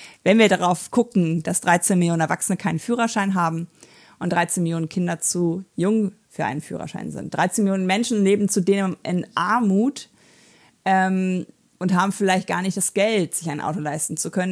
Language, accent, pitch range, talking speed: German, German, 165-195 Hz, 180 wpm